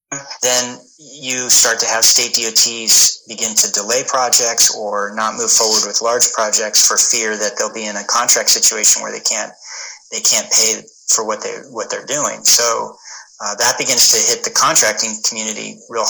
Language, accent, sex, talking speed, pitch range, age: English, American, male, 185 wpm, 110-140 Hz, 40-59